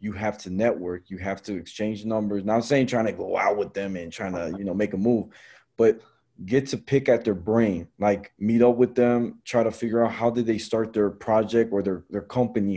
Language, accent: English, American